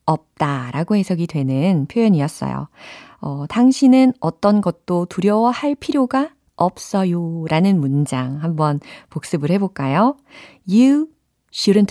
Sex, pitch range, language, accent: female, 150-245 Hz, Korean, native